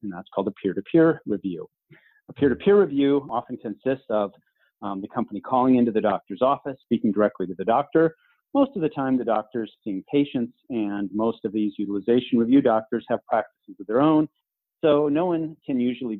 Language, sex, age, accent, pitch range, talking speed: English, male, 40-59, American, 105-130 Hz, 185 wpm